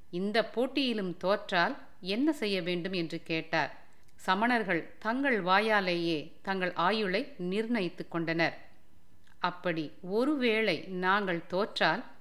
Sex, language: female, Tamil